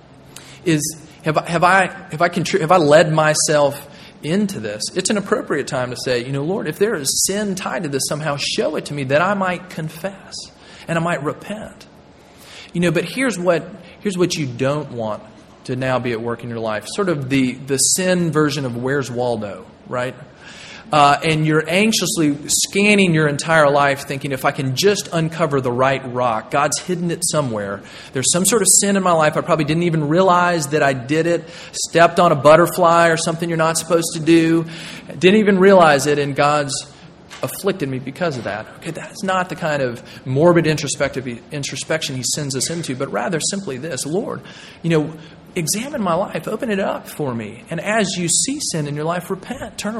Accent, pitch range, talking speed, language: American, 140-180 Hz, 205 wpm, English